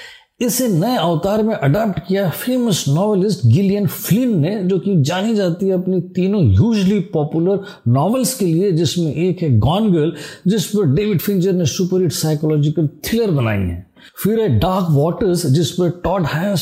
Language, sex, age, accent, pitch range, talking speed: Hindi, male, 50-69, native, 160-210 Hz, 110 wpm